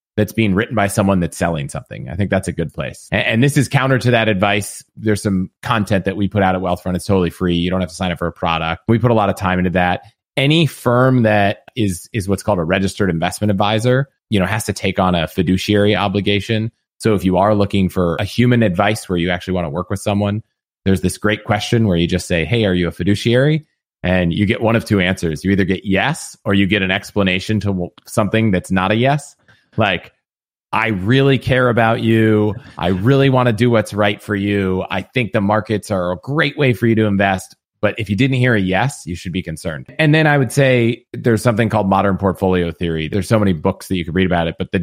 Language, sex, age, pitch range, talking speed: English, male, 30-49, 95-110 Hz, 245 wpm